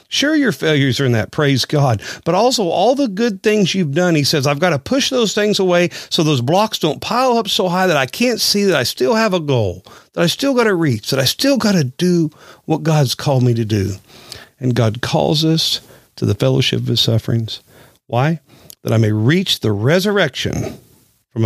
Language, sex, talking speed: English, male, 220 wpm